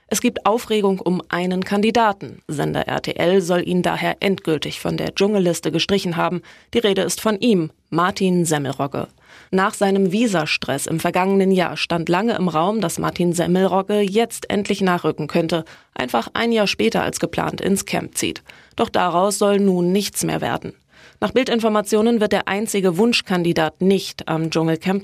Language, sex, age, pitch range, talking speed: German, female, 20-39, 170-210 Hz, 160 wpm